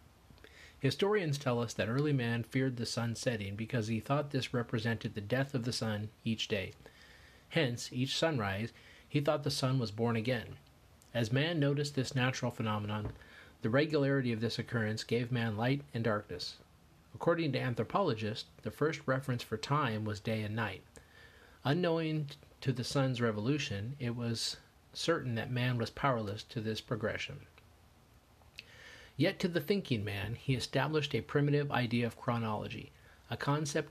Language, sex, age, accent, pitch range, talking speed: English, male, 40-59, American, 110-135 Hz, 160 wpm